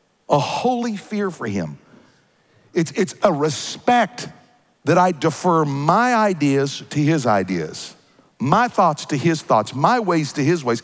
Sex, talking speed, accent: male, 150 wpm, American